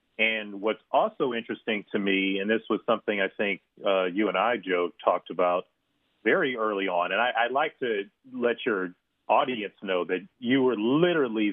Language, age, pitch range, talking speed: English, 40-59, 95-115 Hz, 180 wpm